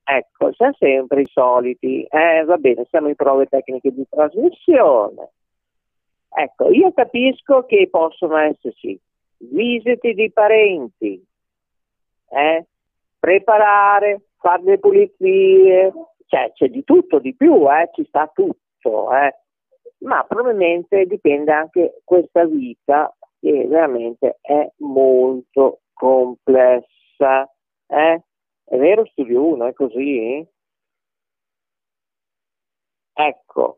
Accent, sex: native, male